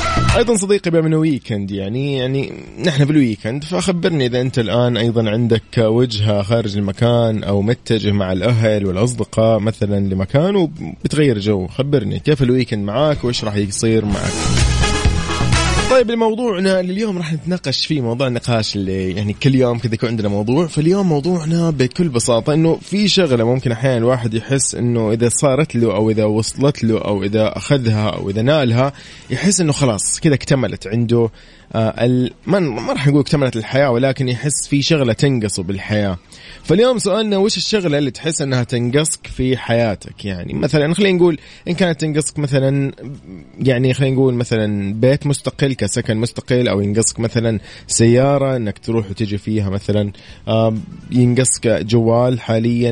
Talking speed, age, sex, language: 155 wpm, 20-39, male, Arabic